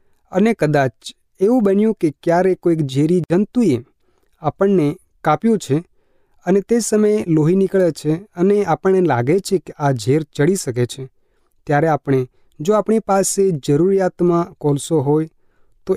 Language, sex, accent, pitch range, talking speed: Gujarati, male, native, 145-185 Hz, 140 wpm